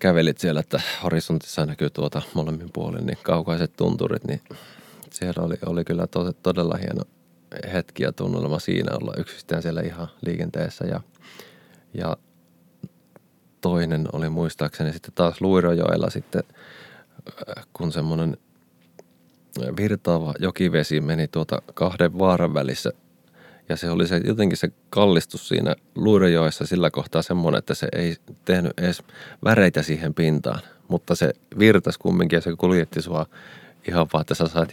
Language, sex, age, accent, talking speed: Finnish, male, 30-49, native, 130 wpm